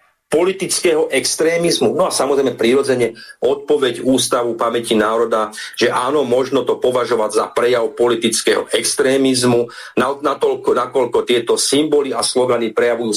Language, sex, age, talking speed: Slovak, male, 40-59, 115 wpm